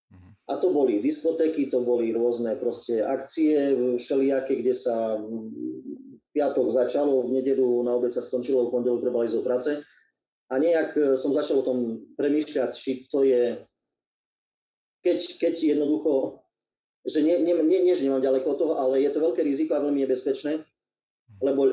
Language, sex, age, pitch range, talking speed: Slovak, male, 30-49, 120-145 Hz, 155 wpm